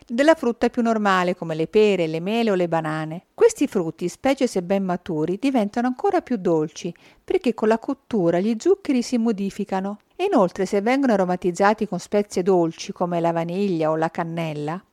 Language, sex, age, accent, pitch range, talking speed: Italian, female, 50-69, native, 175-255 Hz, 175 wpm